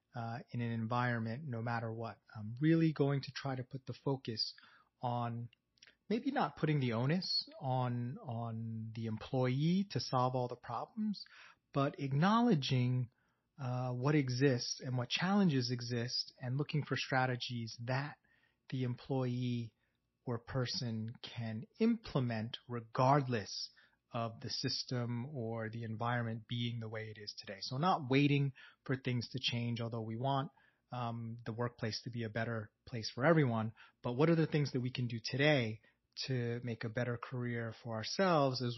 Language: English